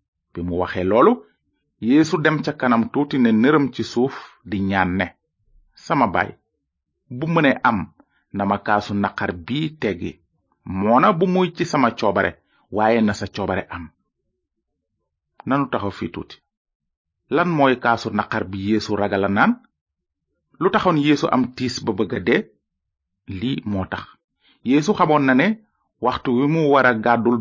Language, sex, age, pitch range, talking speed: French, male, 30-49, 100-150 Hz, 130 wpm